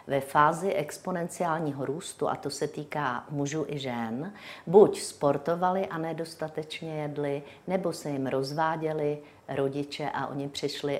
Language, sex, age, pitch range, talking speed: Czech, female, 50-69, 140-180 Hz, 130 wpm